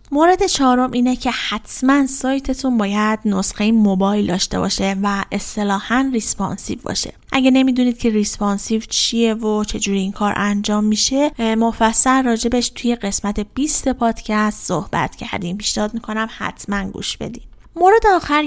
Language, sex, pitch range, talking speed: Persian, female, 200-255 Hz, 135 wpm